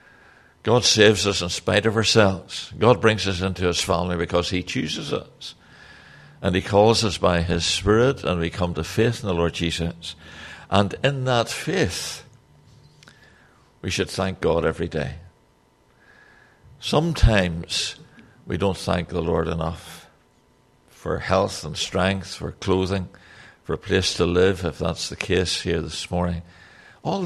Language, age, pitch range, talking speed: English, 60-79, 85-100 Hz, 150 wpm